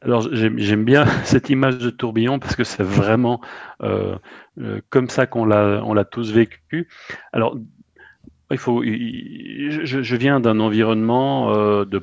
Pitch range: 95-120 Hz